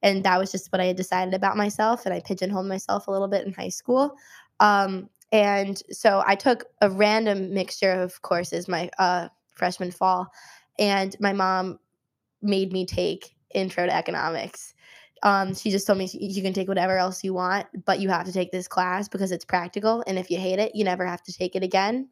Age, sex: 20-39, female